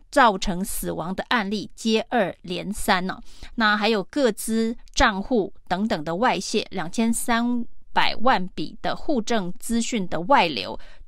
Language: Chinese